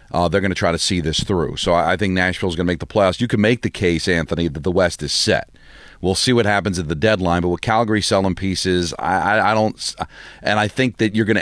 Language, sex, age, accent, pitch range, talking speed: English, male, 40-59, American, 90-110 Hz, 280 wpm